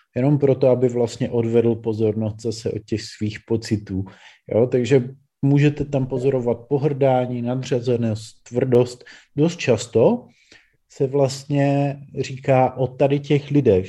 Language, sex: Czech, male